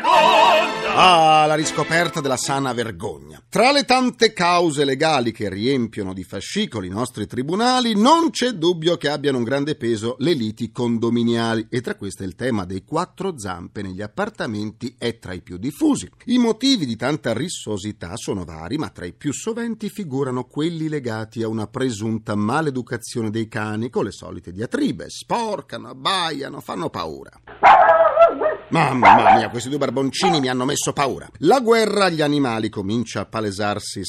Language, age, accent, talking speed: Italian, 40-59, native, 155 wpm